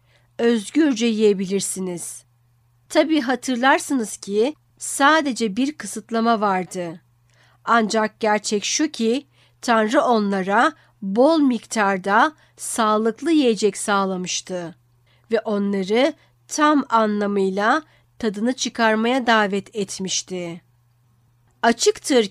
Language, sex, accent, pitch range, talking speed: Turkish, female, native, 185-240 Hz, 80 wpm